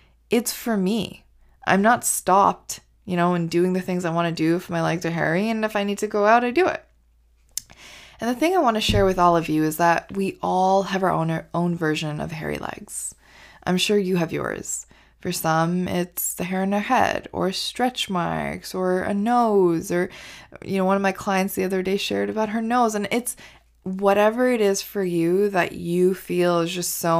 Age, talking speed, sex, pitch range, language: 20-39, 225 wpm, female, 165-205 Hz, English